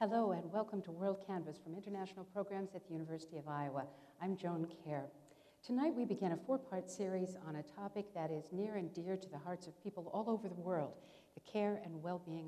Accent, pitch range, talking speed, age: American, 155-200 Hz, 210 wpm, 60-79